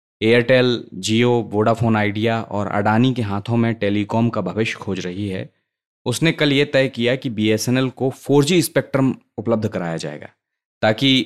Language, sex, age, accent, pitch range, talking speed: Hindi, male, 20-39, native, 110-135 Hz, 155 wpm